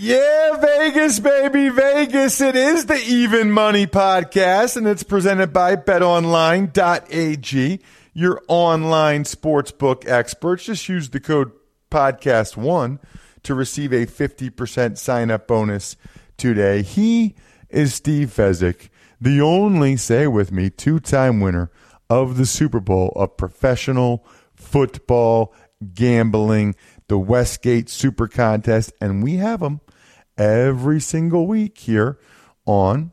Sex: male